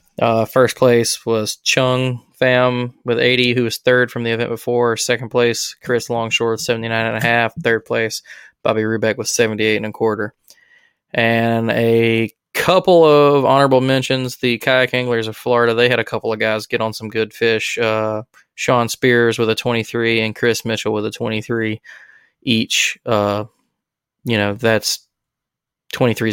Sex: male